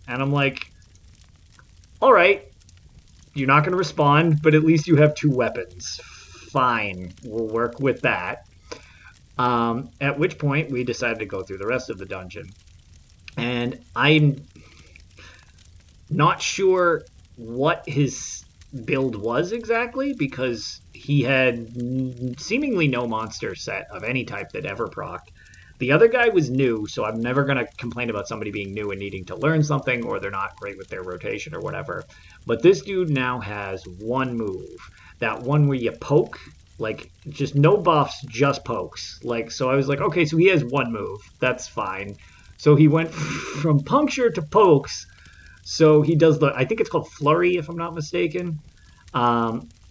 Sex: male